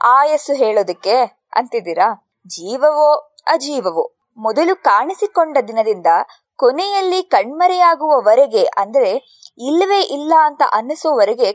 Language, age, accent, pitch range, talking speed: Kannada, 20-39, native, 250-370 Hz, 80 wpm